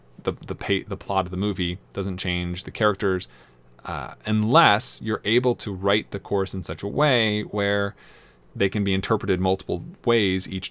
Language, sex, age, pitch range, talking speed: English, male, 20-39, 90-110 Hz, 180 wpm